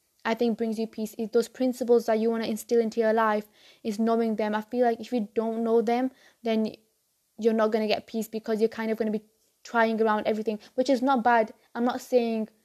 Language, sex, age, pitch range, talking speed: English, female, 10-29, 220-235 Hz, 240 wpm